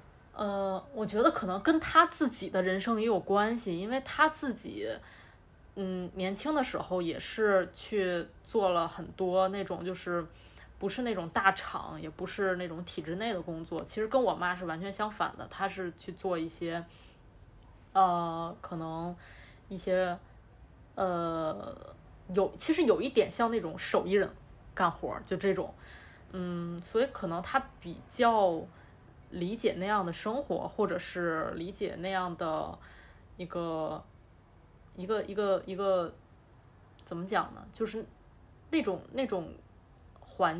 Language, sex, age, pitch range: Chinese, female, 20-39, 170-215 Hz